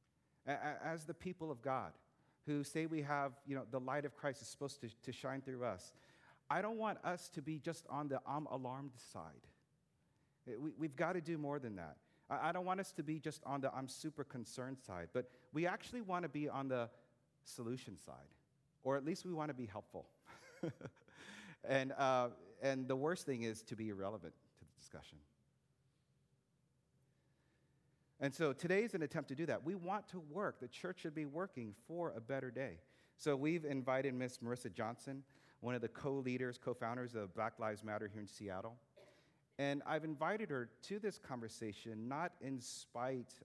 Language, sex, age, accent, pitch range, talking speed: English, male, 40-59, American, 115-150 Hz, 185 wpm